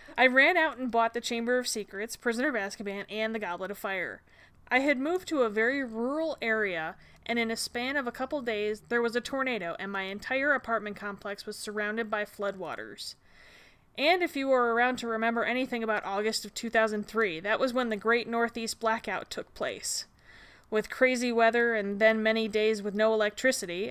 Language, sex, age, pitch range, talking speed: English, female, 20-39, 210-255 Hz, 195 wpm